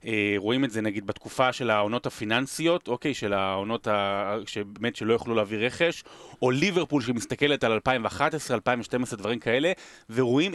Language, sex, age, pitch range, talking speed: Hebrew, male, 30-49, 115-150 Hz, 155 wpm